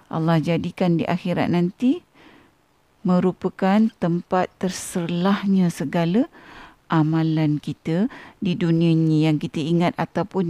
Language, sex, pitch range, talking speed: Malay, female, 175-225 Hz, 105 wpm